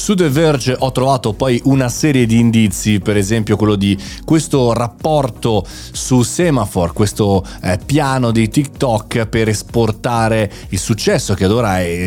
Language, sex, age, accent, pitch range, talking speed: Italian, male, 30-49, native, 100-125 Hz, 155 wpm